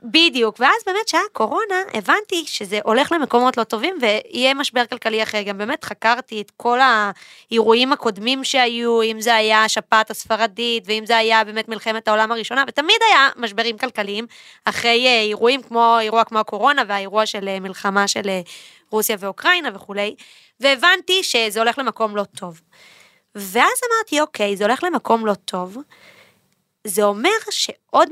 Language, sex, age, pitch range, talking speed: Hebrew, female, 20-39, 215-300 Hz, 145 wpm